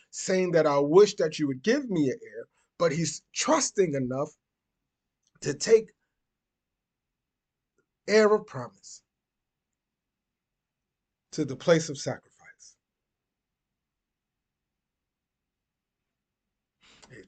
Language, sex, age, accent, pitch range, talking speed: English, male, 30-49, American, 155-225 Hz, 90 wpm